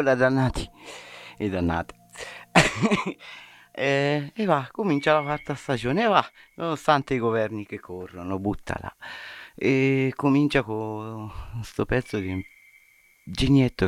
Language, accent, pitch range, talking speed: Italian, native, 95-125 Hz, 105 wpm